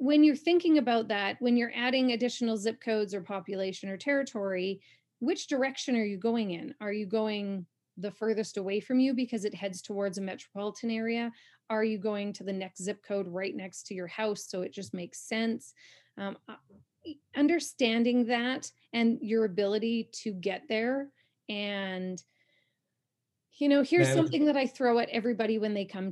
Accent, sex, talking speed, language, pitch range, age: American, female, 175 wpm, English, 200-245 Hz, 30-49